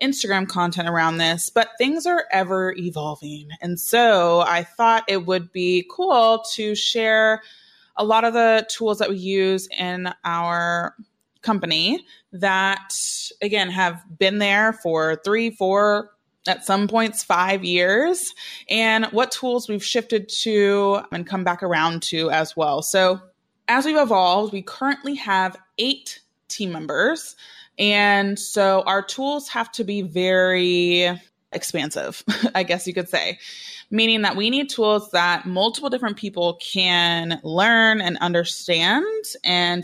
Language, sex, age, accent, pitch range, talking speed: English, female, 20-39, American, 180-225 Hz, 140 wpm